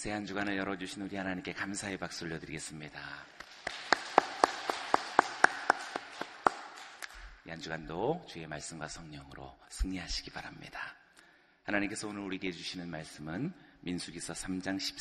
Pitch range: 85-105 Hz